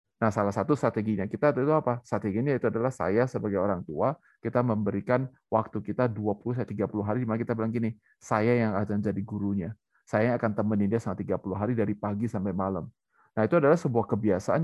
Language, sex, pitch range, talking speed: Indonesian, male, 105-135 Hz, 195 wpm